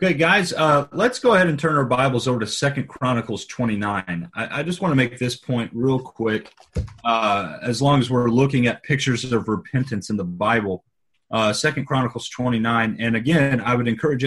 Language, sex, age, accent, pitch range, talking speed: English, male, 30-49, American, 115-160 Hz, 200 wpm